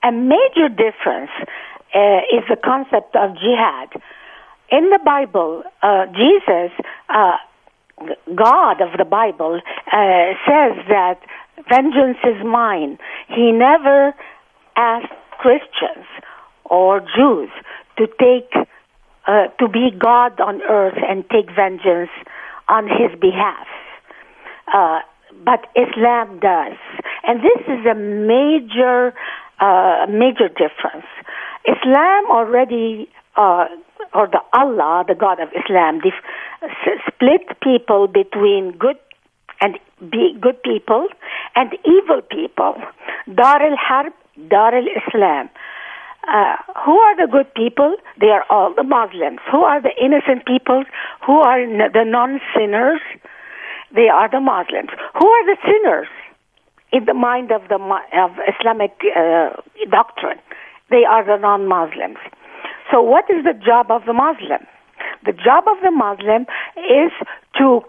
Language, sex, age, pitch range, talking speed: English, female, 50-69, 215-290 Hz, 125 wpm